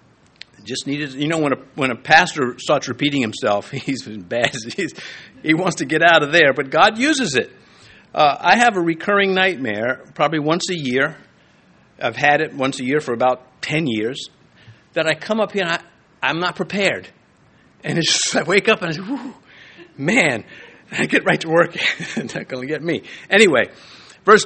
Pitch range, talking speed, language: 125-180 Hz, 195 wpm, English